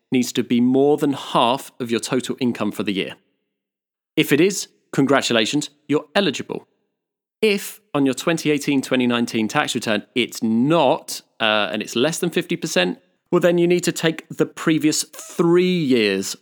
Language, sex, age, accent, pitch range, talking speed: English, male, 30-49, British, 120-160 Hz, 155 wpm